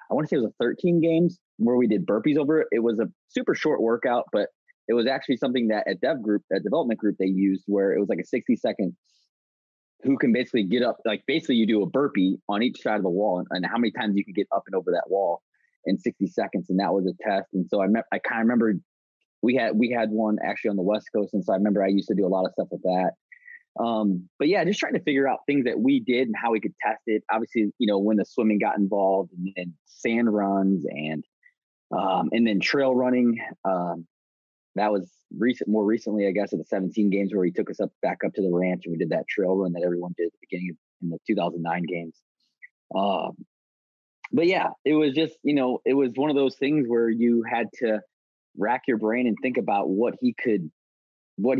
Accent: American